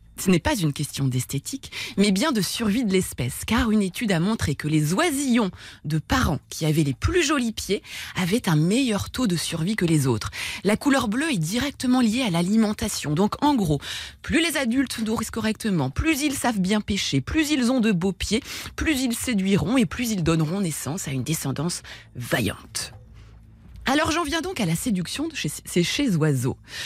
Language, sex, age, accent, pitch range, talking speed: French, female, 20-39, French, 150-245 Hz, 195 wpm